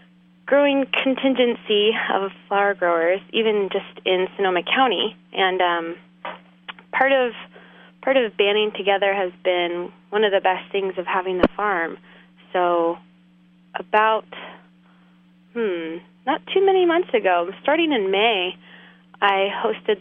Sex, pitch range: female, 175-215 Hz